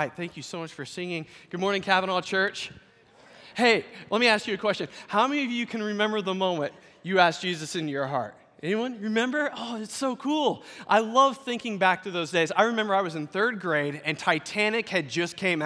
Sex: male